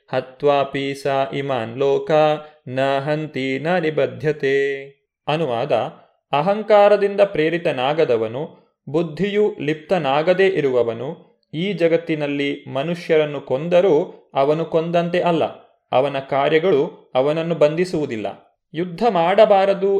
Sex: male